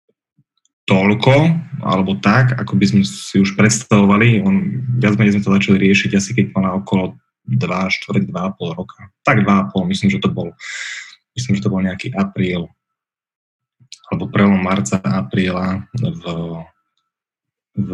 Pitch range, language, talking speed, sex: 95-125 Hz, Slovak, 140 wpm, male